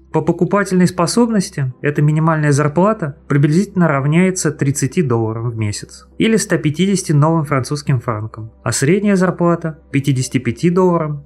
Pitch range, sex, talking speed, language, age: 130-175 Hz, male, 115 wpm, Russian, 30-49